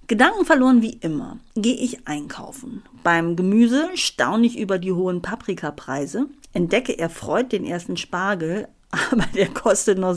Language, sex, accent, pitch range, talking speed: German, female, German, 170-255 Hz, 140 wpm